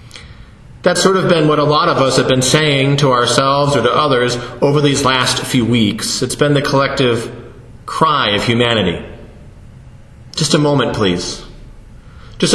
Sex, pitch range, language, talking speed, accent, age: male, 125-160 Hz, English, 165 wpm, American, 40-59